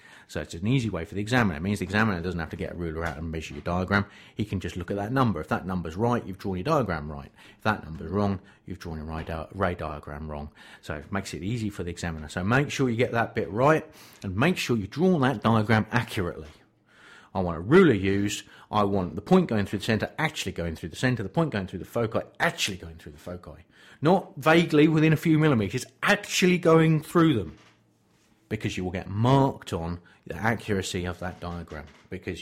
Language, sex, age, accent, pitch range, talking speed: English, male, 40-59, British, 90-125 Hz, 230 wpm